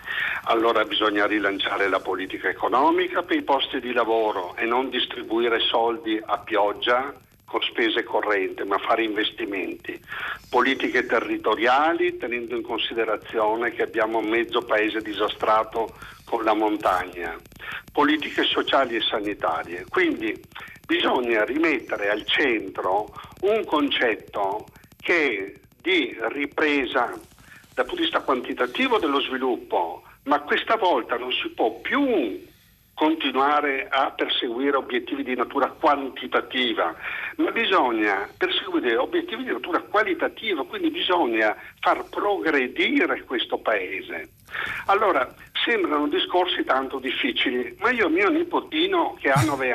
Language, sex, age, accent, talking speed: Italian, male, 50-69, native, 120 wpm